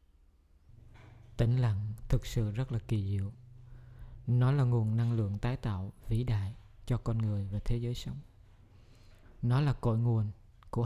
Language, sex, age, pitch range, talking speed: Vietnamese, male, 20-39, 100-125 Hz, 160 wpm